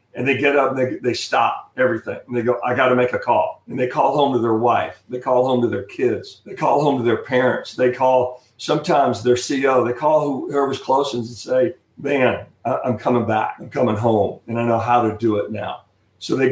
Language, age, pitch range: English, 50-69, 120-140 Hz